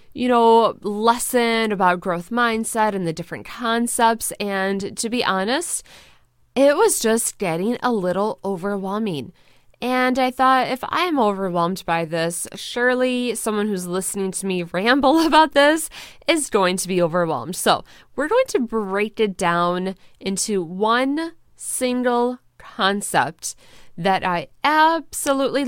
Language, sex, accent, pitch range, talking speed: English, female, American, 185-250 Hz, 135 wpm